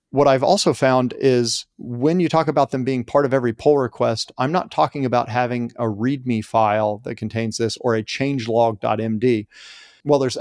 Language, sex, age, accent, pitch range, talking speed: English, male, 40-59, American, 120-140 Hz, 185 wpm